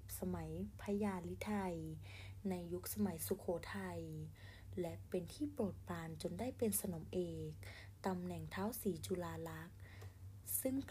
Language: Thai